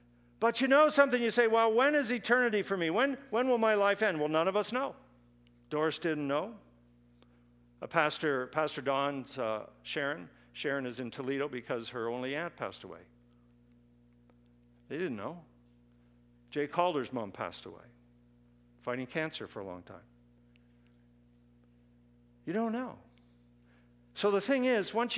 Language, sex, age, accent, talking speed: English, male, 50-69, American, 155 wpm